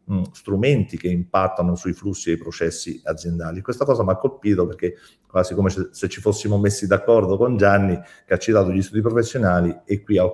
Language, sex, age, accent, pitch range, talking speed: Italian, male, 40-59, native, 90-110 Hz, 190 wpm